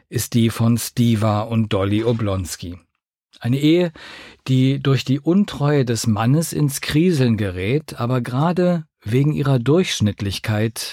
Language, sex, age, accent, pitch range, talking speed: German, male, 50-69, German, 105-140 Hz, 125 wpm